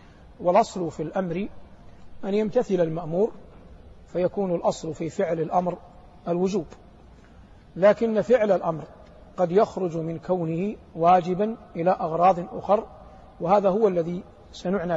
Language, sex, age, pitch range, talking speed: Arabic, male, 50-69, 170-205 Hz, 110 wpm